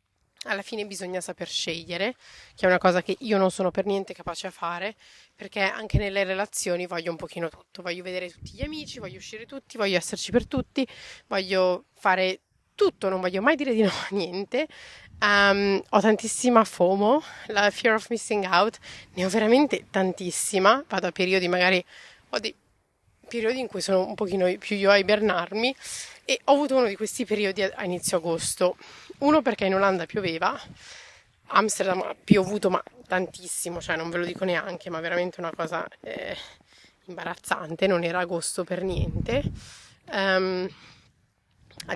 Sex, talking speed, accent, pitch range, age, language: female, 170 wpm, native, 180-215 Hz, 30-49, Italian